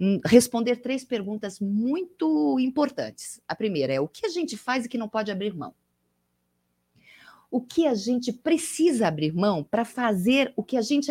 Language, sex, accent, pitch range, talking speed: Portuguese, female, Brazilian, 170-240 Hz, 175 wpm